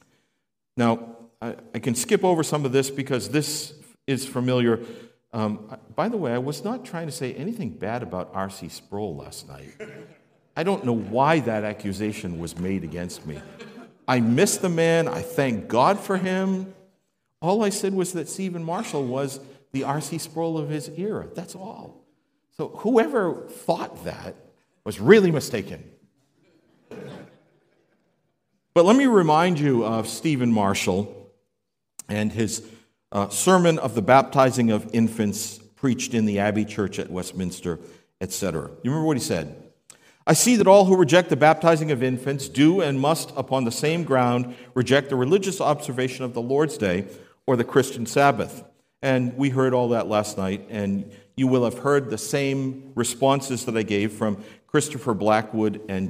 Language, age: English, 50-69